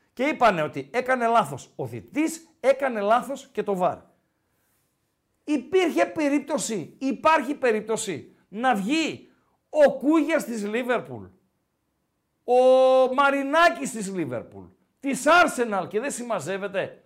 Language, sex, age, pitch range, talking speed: Greek, male, 50-69, 210-285 Hz, 110 wpm